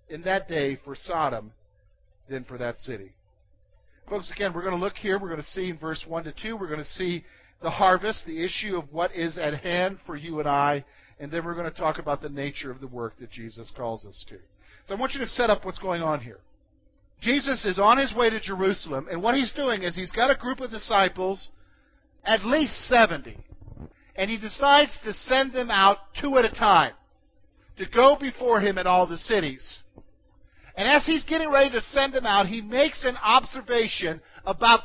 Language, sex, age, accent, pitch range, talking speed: English, male, 50-69, American, 160-230 Hz, 215 wpm